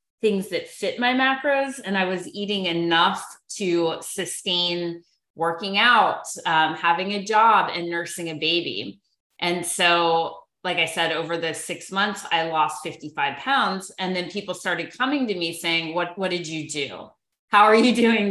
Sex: female